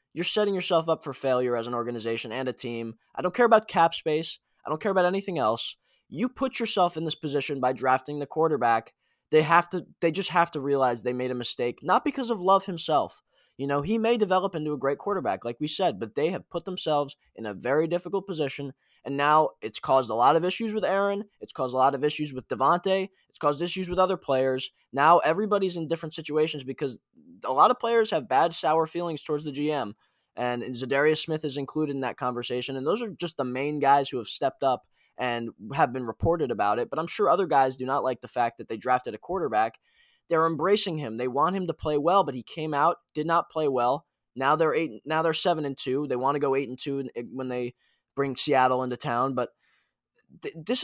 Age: 20-39